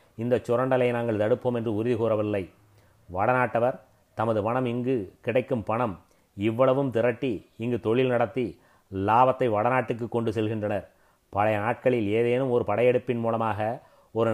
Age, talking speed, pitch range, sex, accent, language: 30-49, 120 wpm, 110-120 Hz, male, native, Tamil